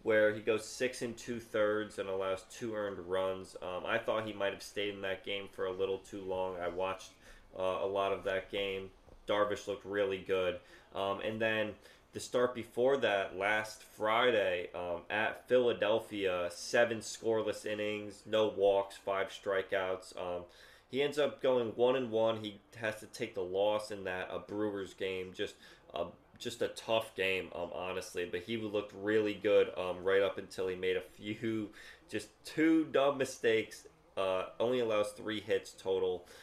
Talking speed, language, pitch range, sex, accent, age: 180 wpm, English, 95-115 Hz, male, American, 20-39